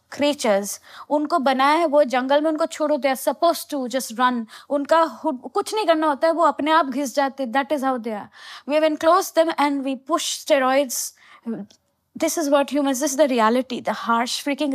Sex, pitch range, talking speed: female, 240-305 Hz, 85 wpm